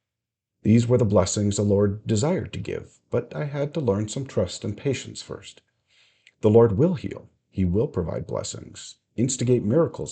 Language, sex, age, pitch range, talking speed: English, male, 50-69, 95-120 Hz, 170 wpm